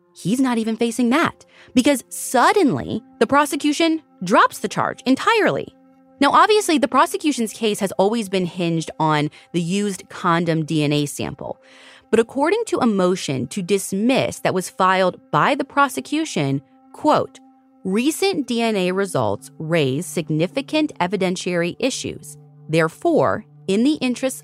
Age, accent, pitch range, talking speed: 30-49, American, 160-255 Hz, 130 wpm